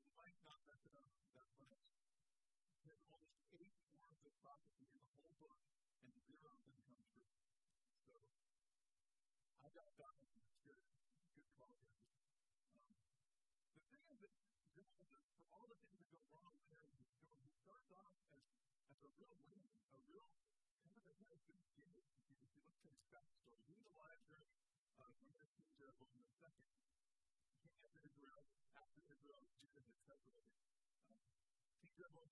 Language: English